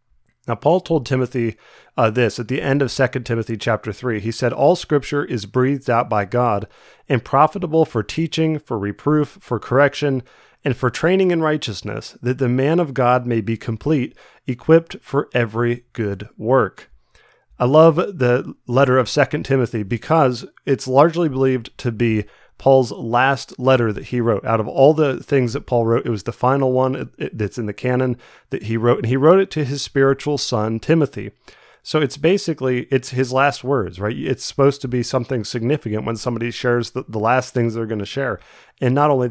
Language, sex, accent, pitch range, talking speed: English, male, American, 115-140 Hz, 190 wpm